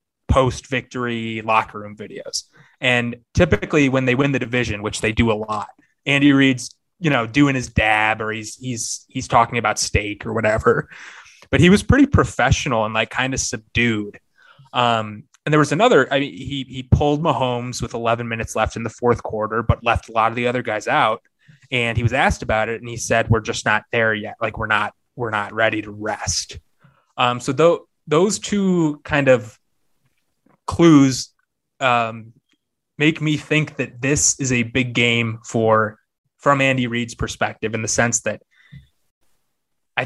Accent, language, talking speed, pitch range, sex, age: American, English, 180 wpm, 110-135 Hz, male, 20-39